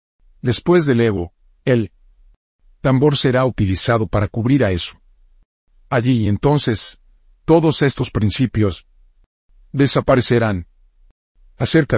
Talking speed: 90 wpm